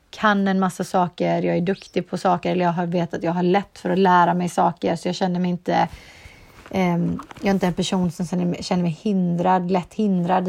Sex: female